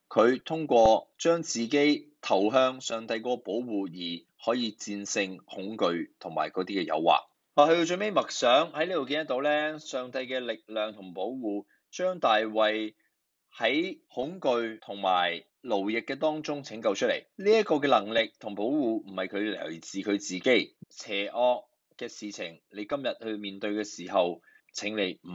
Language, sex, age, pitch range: Chinese, male, 20-39, 95-125 Hz